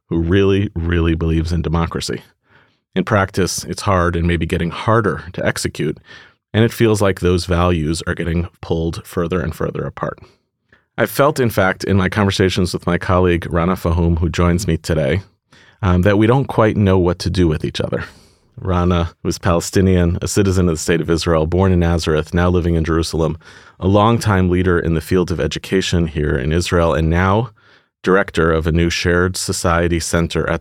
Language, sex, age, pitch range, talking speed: English, male, 30-49, 85-95 Hz, 185 wpm